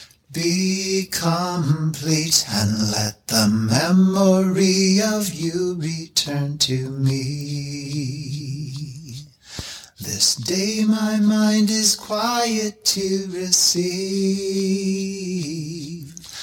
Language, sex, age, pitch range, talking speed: English, male, 30-49, 155-190 Hz, 70 wpm